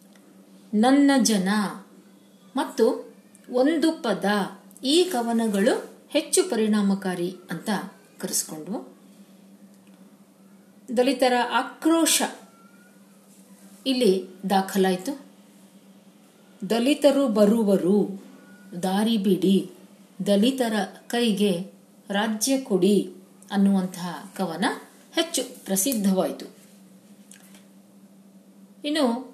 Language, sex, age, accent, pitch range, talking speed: Kannada, female, 50-69, native, 195-250 Hz, 55 wpm